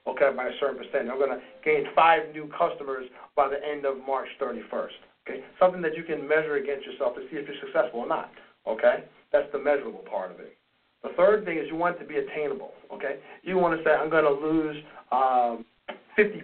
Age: 40-59